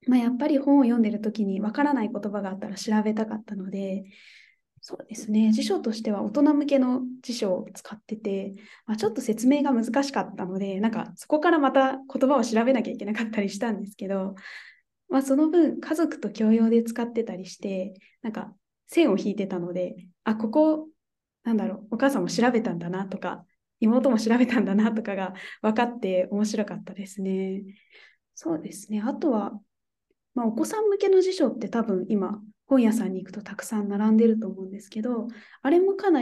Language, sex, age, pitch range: Japanese, female, 20-39, 200-255 Hz